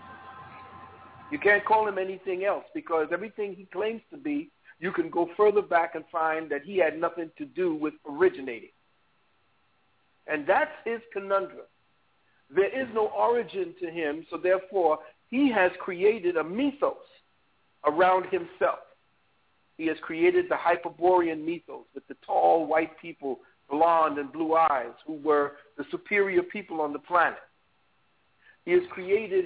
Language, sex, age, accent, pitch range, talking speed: English, male, 50-69, American, 165-280 Hz, 145 wpm